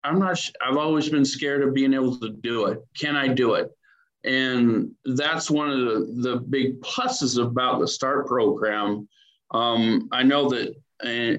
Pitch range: 120-145 Hz